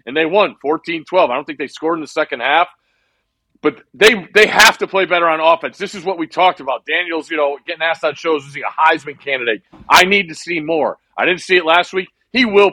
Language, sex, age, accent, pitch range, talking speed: English, male, 40-59, American, 145-170 Hz, 245 wpm